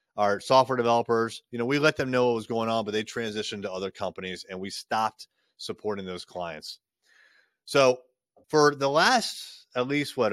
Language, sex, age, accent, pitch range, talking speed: English, male, 30-49, American, 105-150 Hz, 185 wpm